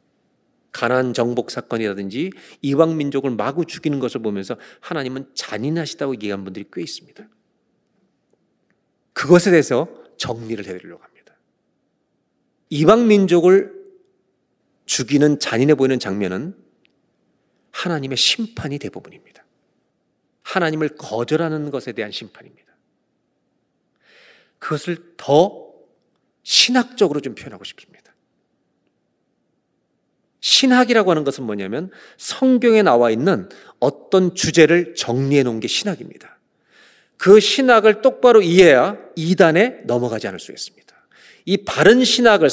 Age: 40-59